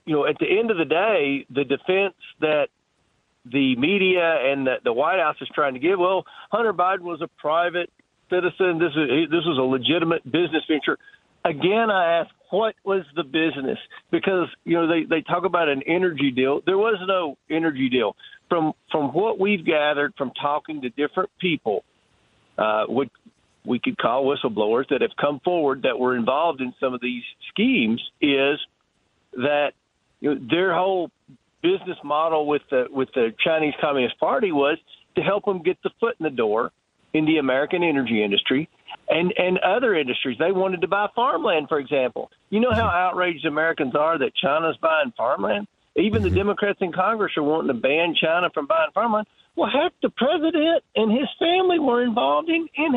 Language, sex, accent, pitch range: English, male, American, 150-230 Hz